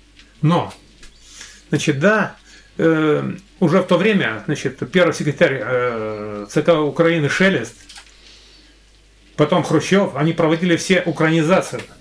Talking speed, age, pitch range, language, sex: 105 wpm, 30-49, 150-180 Hz, Russian, male